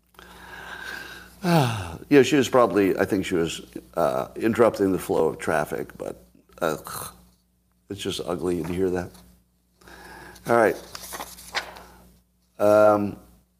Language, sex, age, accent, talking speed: English, male, 50-69, American, 115 wpm